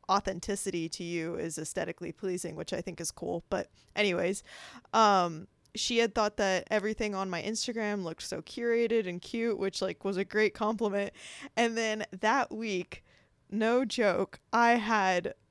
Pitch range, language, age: 185-235 Hz, English, 20-39